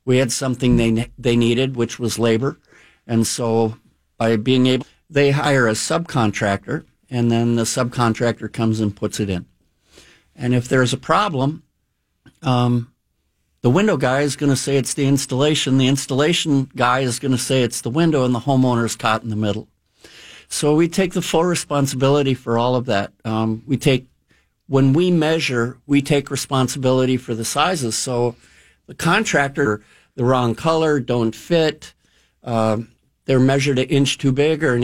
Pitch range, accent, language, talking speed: 115-140 Hz, American, English, 170 wpm